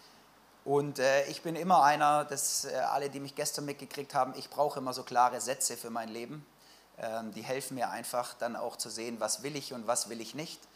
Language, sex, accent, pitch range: German, male, German, 130-160 Hz